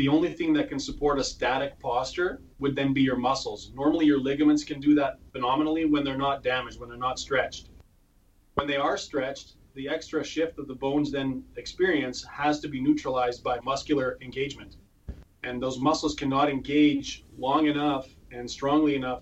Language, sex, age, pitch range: English, male, 30-49, 125-150 Hz